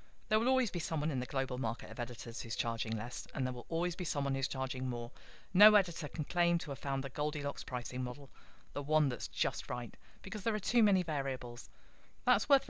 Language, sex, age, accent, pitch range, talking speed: English, female, 40-59, British, 135-180 Hz, 220 wpm